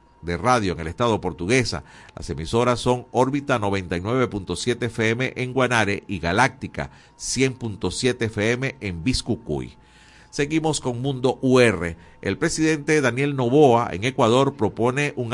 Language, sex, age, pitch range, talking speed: Spanish, male, 50-69, 100-135 Hz, 125 wpm